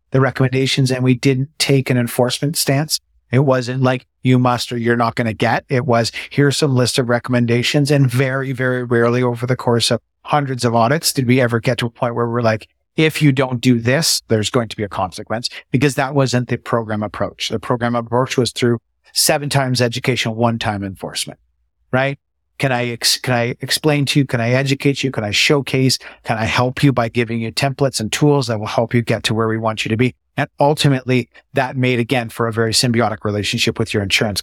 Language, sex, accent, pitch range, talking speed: English, male, American, 115-135 Hz, 220 wpm